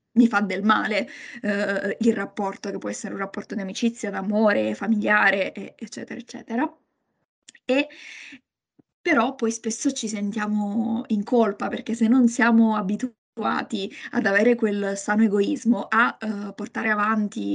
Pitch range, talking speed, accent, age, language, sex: 205-240 Hz, 135 wpm, native, 20-39, Italian, female